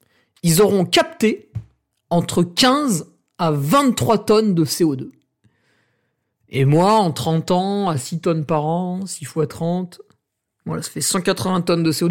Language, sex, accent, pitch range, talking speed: French, male, French, 155-205 Hz, 150 wpm